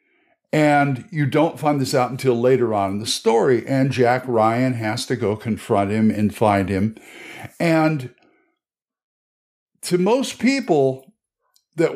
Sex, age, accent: male, 60-79, American